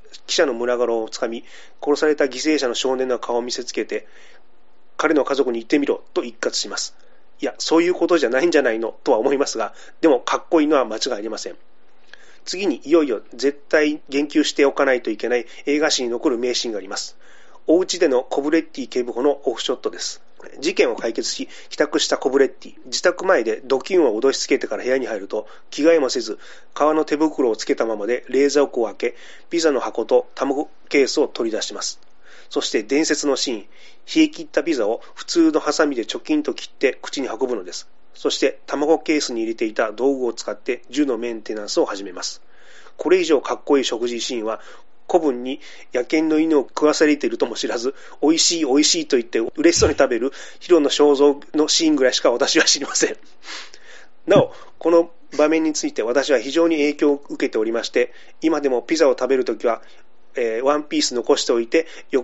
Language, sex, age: Japanese, male, 30-49